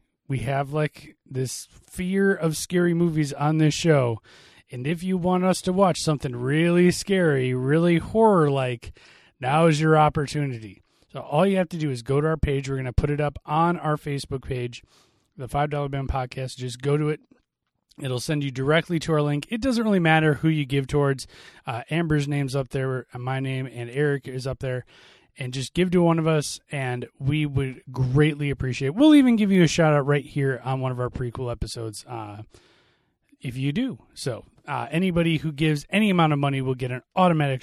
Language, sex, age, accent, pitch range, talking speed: English, male, 20-39, American, 130-170 Hz, 205 wpm